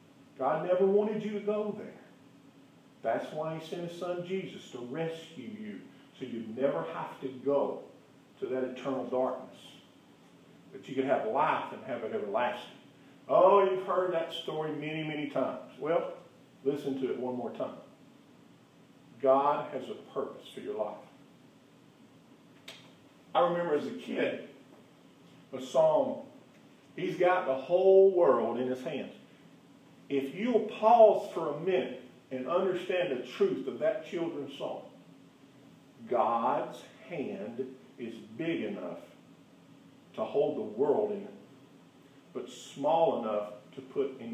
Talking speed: 140 wpm